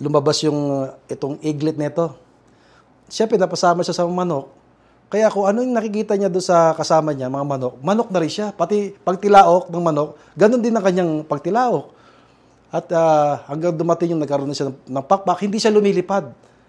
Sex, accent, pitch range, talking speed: male, native, 140-195 Hz, 175 wpm